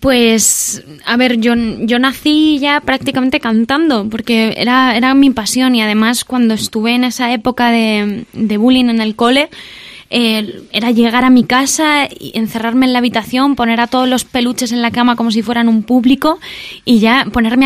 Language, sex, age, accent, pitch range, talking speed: Spanish, female, 20-39, Spanish, 220-265 Hz, 185 wpm